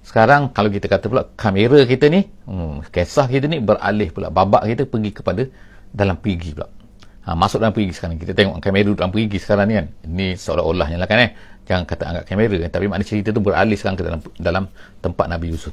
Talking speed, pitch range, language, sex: 210 wpm, 95-115 Hz, English, male